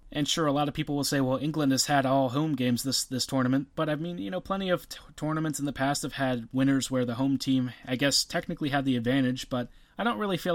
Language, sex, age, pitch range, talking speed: English, male, 20-39, 135-160 Hz, 265 wpm